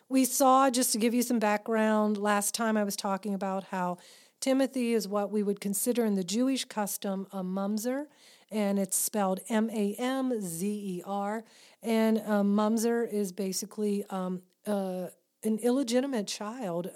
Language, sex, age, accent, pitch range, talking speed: English, female, 40-59, American, 195-230 Hz, 145 wpm